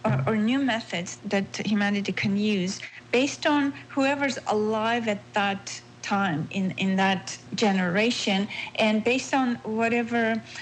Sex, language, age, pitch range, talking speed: female, English, 40-59, 200-235 Hz, 130 wpm